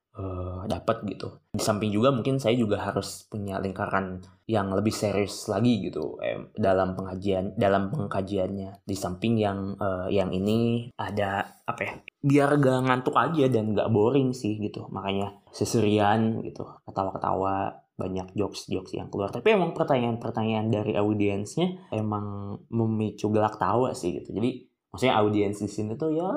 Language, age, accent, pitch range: Indonesian, 20-39, native, 100-120 Hz